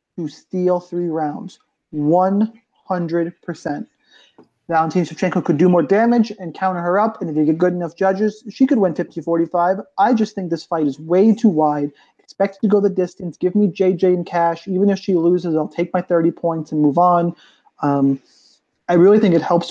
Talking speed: 190 wpm